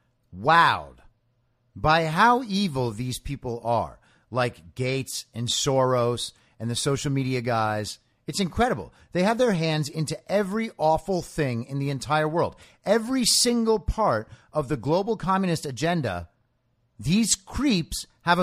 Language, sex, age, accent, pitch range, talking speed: English, male, 50-69, American, 120-180 Hz, 135 wpm